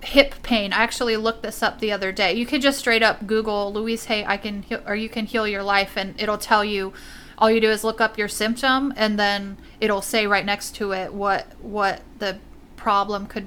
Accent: American